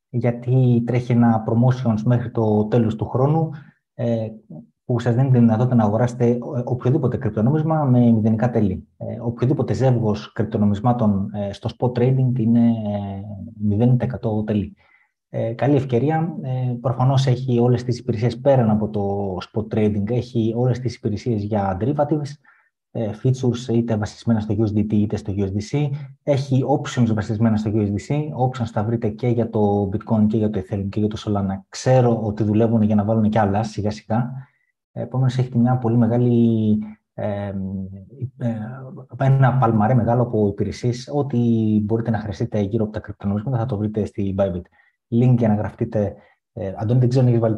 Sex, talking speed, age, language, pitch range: male, 150 wpm, 20-39, Greek, 105-125 Hz